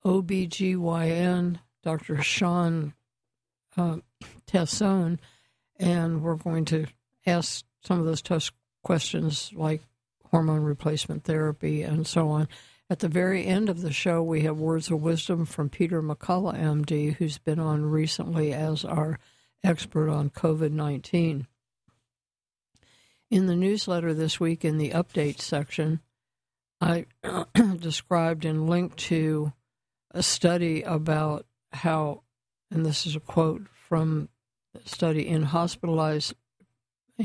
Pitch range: 150-170 Hz